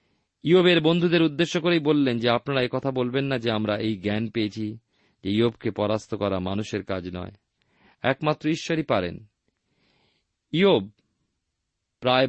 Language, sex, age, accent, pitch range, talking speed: Bengali, male, 40-59, native, 105-145 Hz, 120 wpm